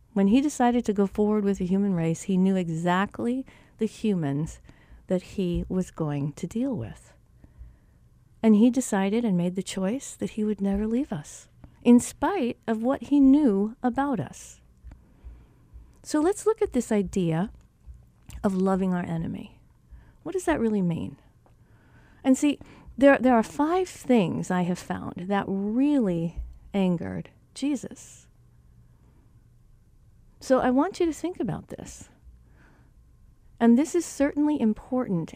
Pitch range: 180-250 Hz